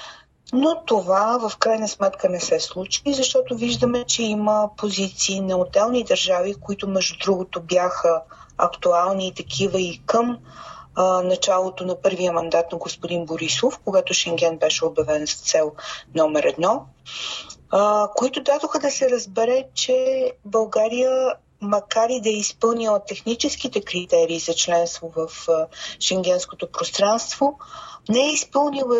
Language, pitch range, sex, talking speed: Bulgarian, 185-245 Hz, female, 135 wpm